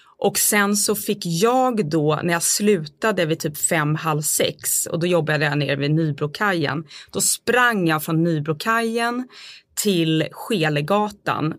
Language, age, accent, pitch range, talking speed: Swedish, 20-39, native, 160-205 Hz, 145 wpm